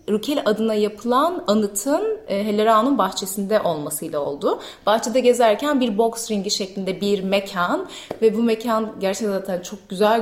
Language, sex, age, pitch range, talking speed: Turkish, female, 30-49, 190-245 Hz, 140 wpm